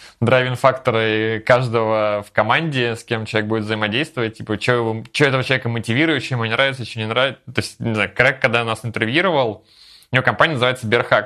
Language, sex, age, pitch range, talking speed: Russian, male, 20-39, 110-130 Hz, 180 wpm